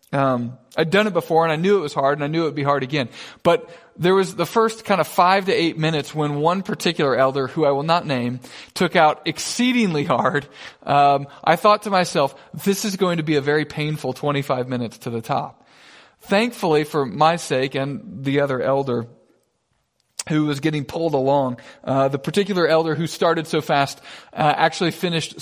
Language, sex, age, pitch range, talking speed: English, male, 40-59, 135-175 Hz, 200 wpm